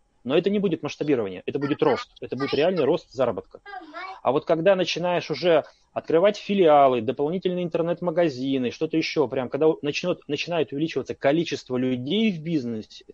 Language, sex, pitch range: Russian, male, 130-170 Hz